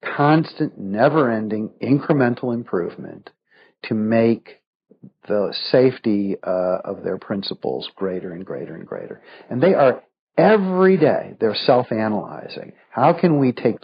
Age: 50-69